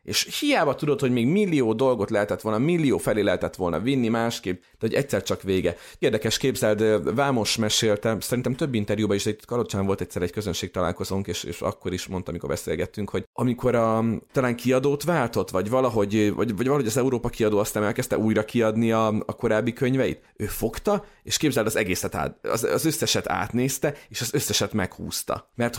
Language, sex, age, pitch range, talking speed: Hungarian, male, 30-49, 105-130 Hz, 185 wpm